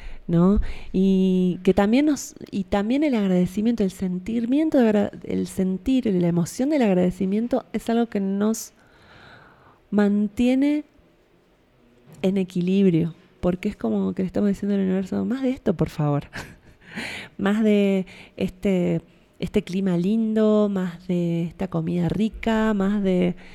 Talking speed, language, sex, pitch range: 135 wpm, Spanish, female, 180-215 Hz